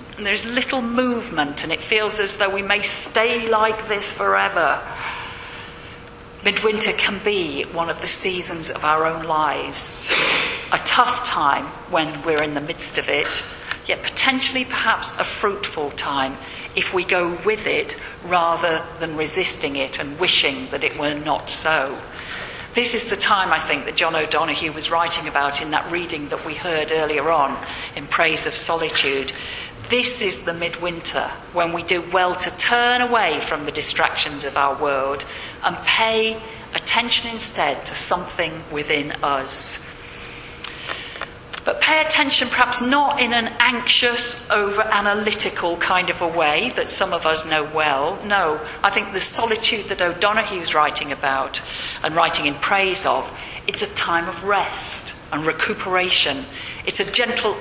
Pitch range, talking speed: 160-230 Hz, 155 wpm